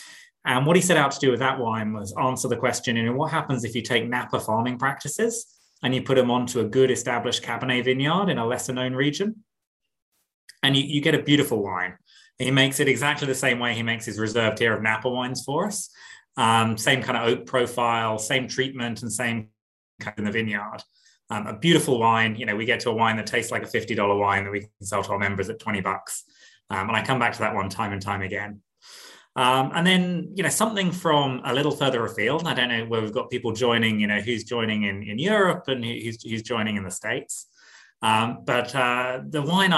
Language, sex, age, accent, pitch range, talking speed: English, male, 20-39, British, 110-130 Hz, 230 wpm